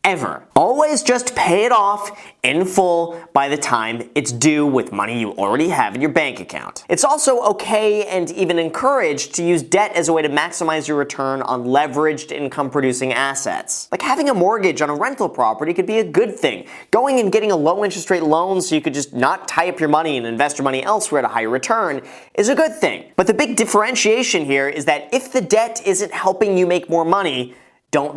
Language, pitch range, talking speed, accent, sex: English, 140-200 Hz, 220 wpm, American, male